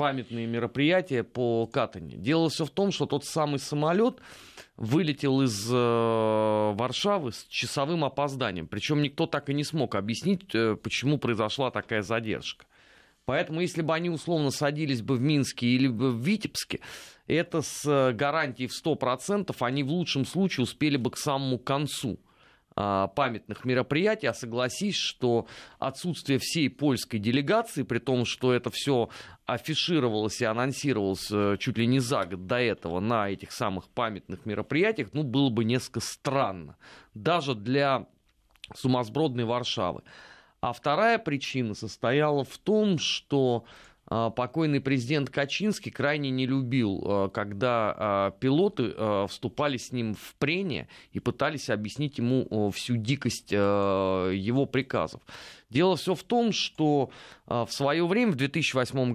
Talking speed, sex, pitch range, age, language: 135 wpm, male, 115-145 Hz, 30-49, Russian